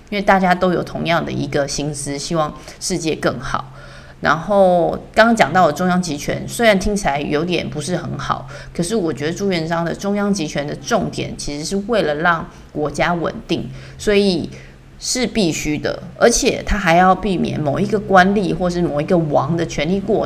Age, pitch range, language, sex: 30-49, 150-195 Hz, Chinese, female